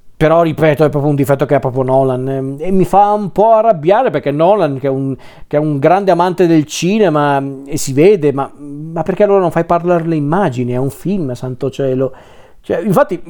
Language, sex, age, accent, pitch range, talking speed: Italian, male, 40-59, native, 135-160 Hz, 200 wpm